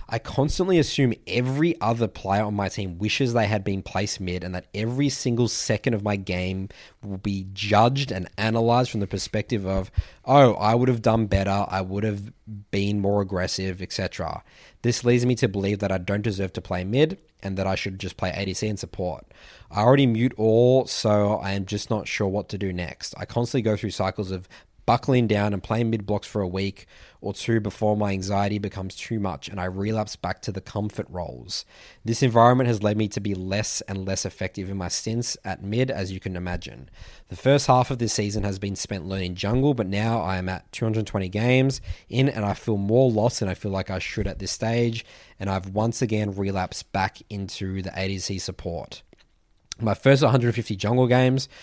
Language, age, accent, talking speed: English, 20-39, Australian, 210 wpm